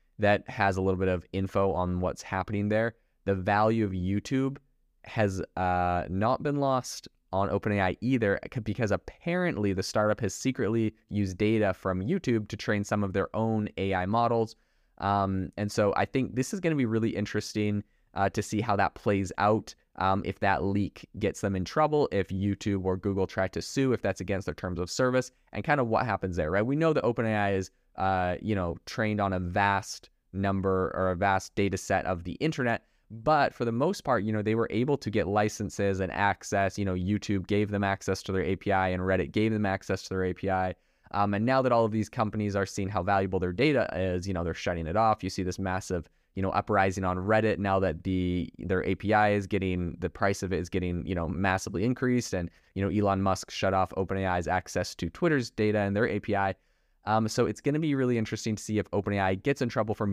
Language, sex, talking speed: English, male, 220 wpm